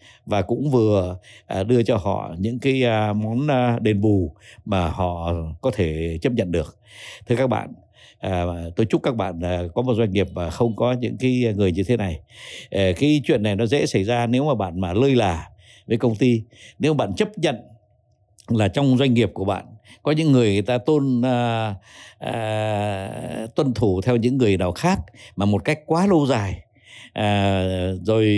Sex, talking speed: male, 180 wpm